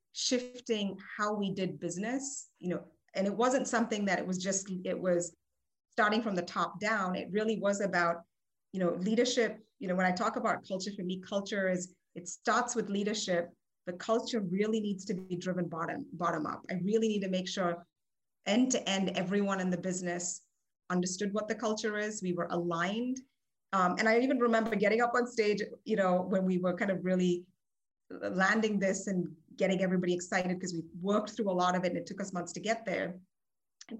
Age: 30-49